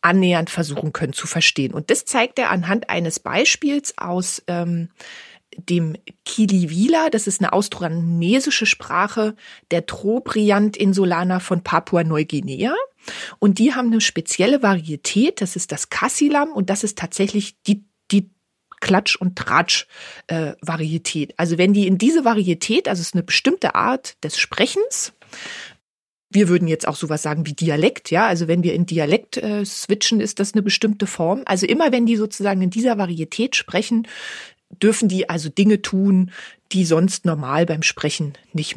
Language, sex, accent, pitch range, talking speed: English, female, German, 165-215 Hz, 160 wpm